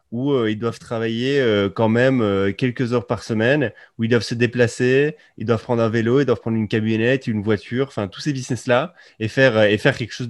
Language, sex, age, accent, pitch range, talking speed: French, male, 20-39, French, 105-125 Hz, 240 wpm